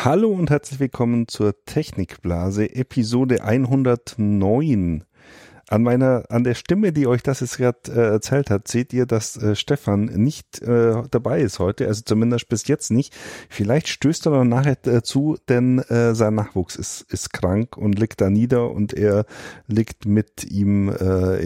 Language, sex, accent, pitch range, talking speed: German, male, German, 105-130 Hz, 165 wpm